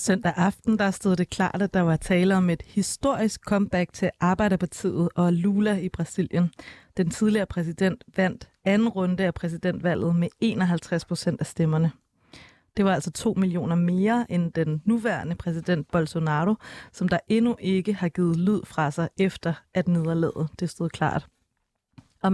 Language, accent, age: Danish, native, 30-49